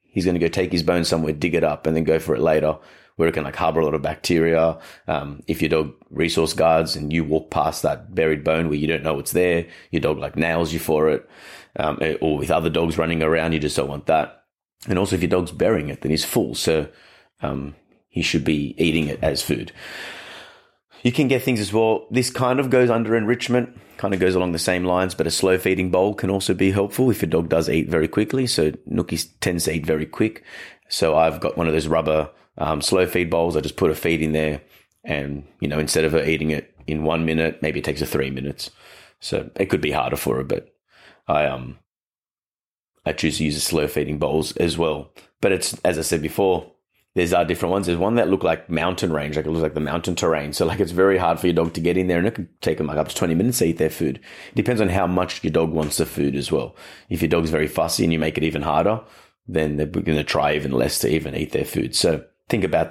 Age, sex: 30-49, male